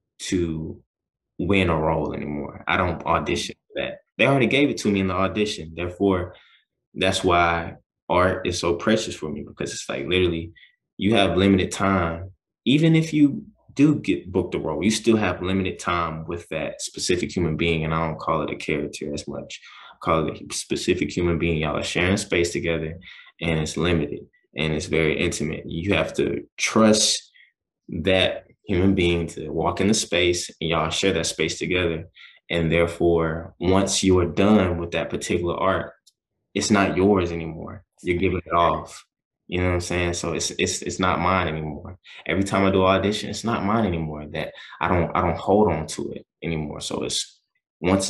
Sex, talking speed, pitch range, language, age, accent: male, 190 wpm, 80-95 Hz, English, 20-39, American